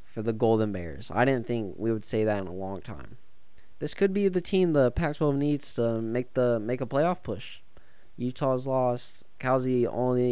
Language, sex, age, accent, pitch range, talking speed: English, male, 20-39, American, 115-140 Hz, 200 wpm